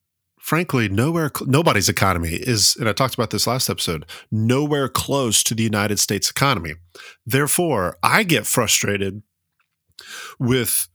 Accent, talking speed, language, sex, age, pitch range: American, 125 wpm, English, male, 30-49, 95-140 Hz